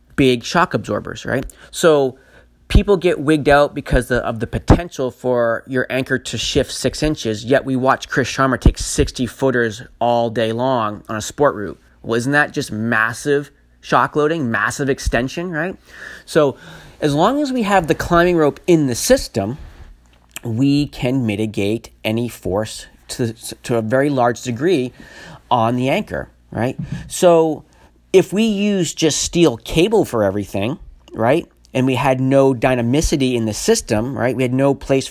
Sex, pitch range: male, 115-150 Hz